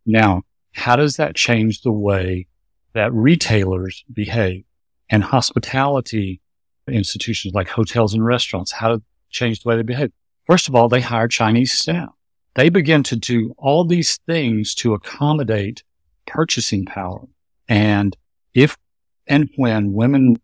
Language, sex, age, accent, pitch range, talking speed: English, male, 50-69, American, 100-125 Hz, 140 wpm